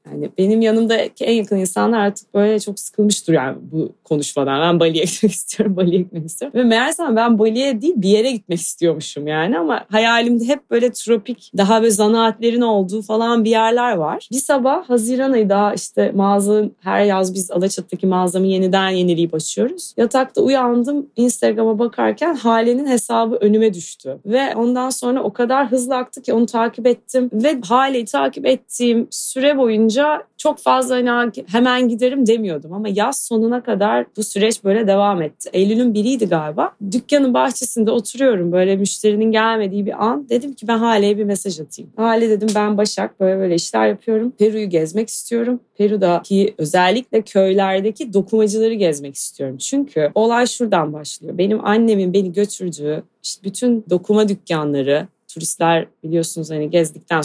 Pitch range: 185-235 Hz